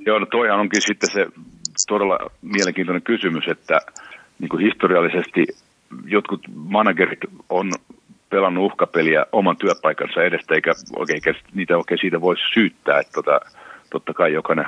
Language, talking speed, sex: Finnish, 130 wpm, male